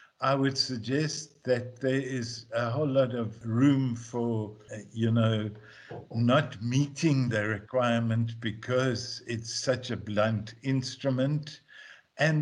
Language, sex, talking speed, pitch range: English, male, 125 wpm, 115-145 Hz